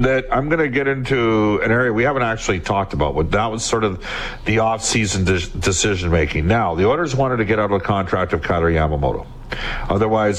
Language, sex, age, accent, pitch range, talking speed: English, male, 50-69, American, 90-110 Hz, 210 wpm